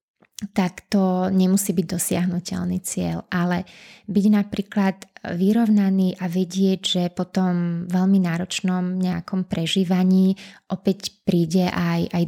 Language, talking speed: Slovak, 110 wpm